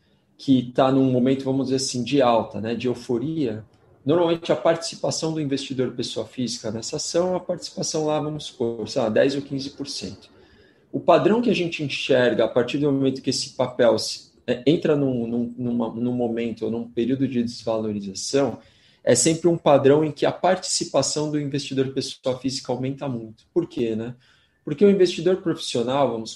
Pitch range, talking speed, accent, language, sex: 120-155 Hz, 175 wpm, Brazilian, Portuguese, male